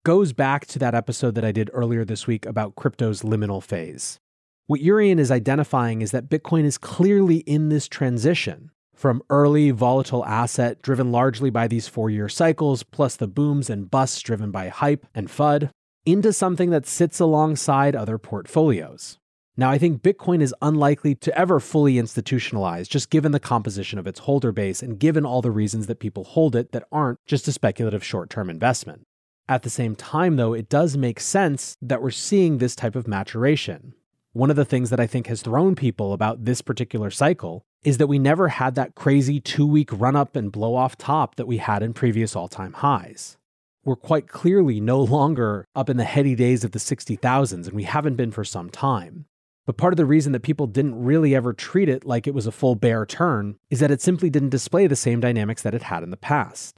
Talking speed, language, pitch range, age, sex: 200 wpm, English, 115-150 Hz, 30-49, male